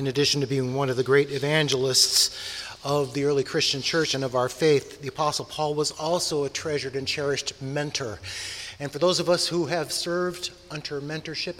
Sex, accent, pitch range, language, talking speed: male, American, 115-160 Hz, English, 195 wpm